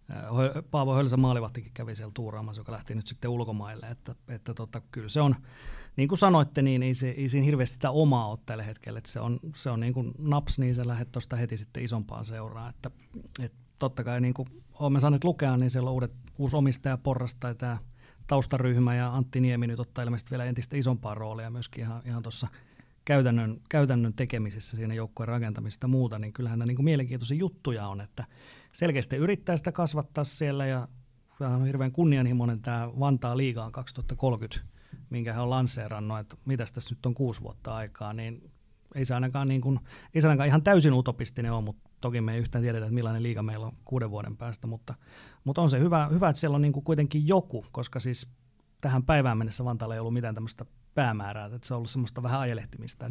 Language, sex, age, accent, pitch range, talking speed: Finnish, male, 30-49, native, 115-135 Hz, 200 wpm